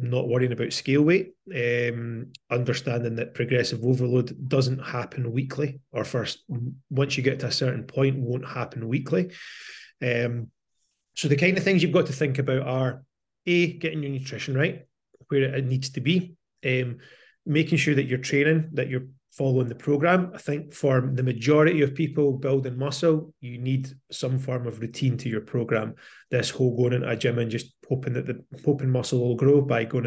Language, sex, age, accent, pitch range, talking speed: English, male, 30-49, British, 125-145 Hz, 185 wpm